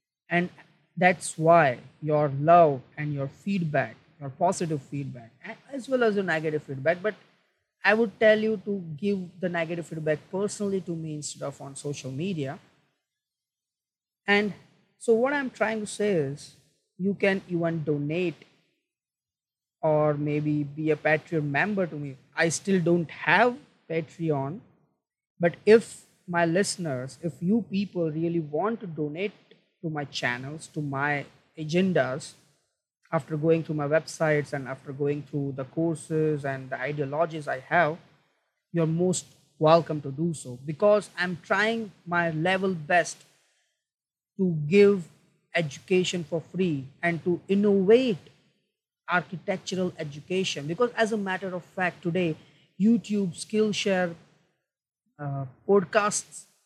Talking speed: 135 wpm